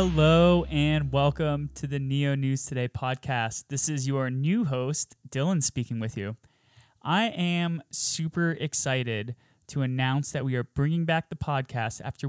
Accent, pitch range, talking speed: American, 125-150 Hz, 155 wpm